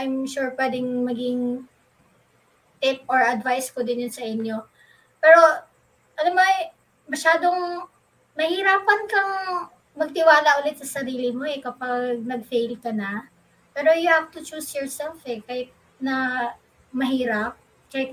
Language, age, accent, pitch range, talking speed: Filipino, 20-39, native, 240-290 Hz, 130 wpm